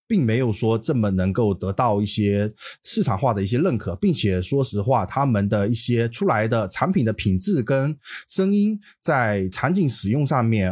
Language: Chinese